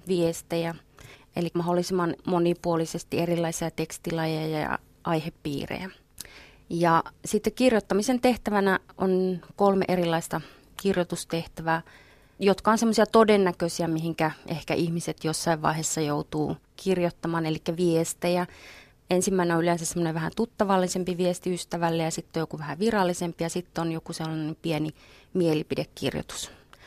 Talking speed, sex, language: 110 wpm, female, Finnish